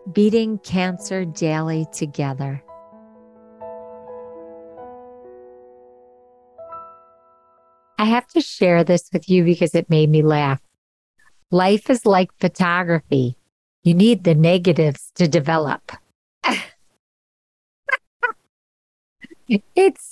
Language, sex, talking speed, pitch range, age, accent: English, female, 80 wpm, 155-190 Hz, 50-69, American